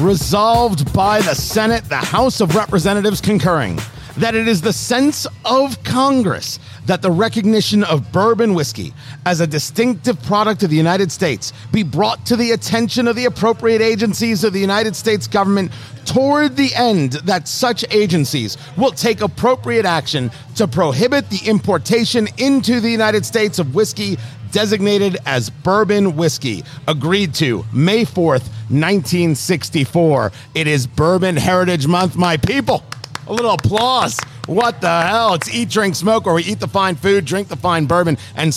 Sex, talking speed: male, 155 wpm